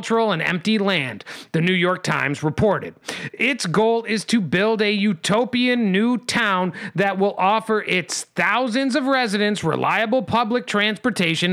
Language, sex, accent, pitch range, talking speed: English, male, American, 190-265 Hz, 140 wpm